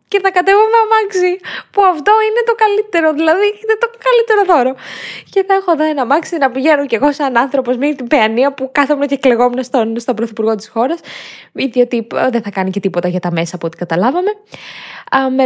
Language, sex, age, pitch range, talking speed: Greek, female, 20-39, 180-250 Hz, 205 wpm